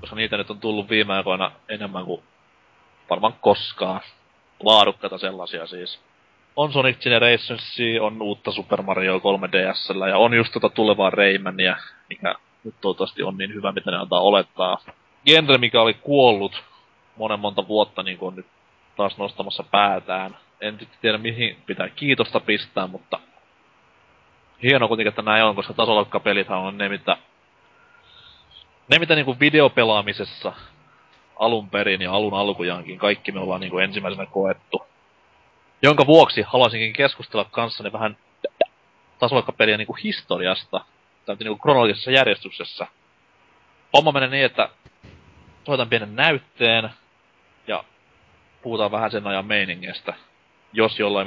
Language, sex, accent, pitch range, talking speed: Finnish, male, native, 95-115 Hz, 130 wpm